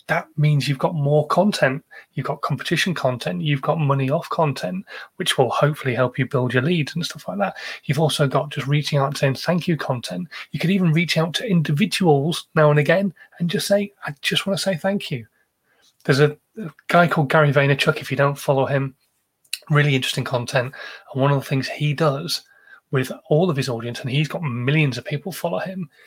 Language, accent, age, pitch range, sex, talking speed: English, British, 30-49, 135-175 Hz, male, 215 wpm